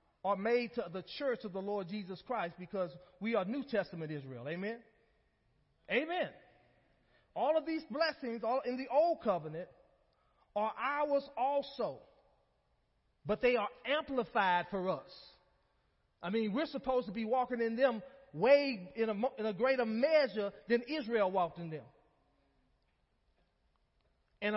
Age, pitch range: 30-49, 195-265 Hz